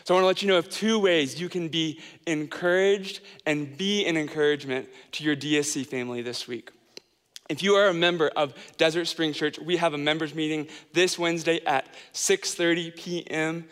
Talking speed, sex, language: 185 wpm, male, English